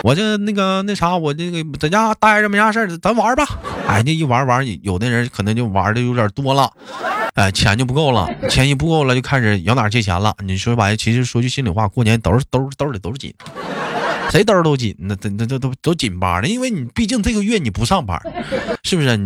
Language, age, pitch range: Chinese, 20-39, 105-155 Hz